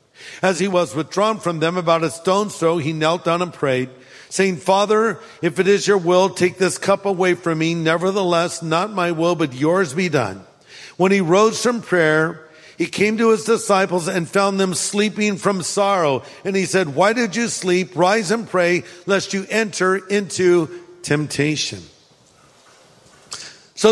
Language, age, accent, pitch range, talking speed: English, 50-69, American, 170-215 Hz, 170 wpm